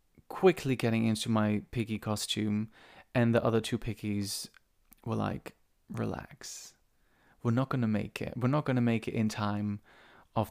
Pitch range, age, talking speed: 110-125 Hz, 20-39, 165 wpm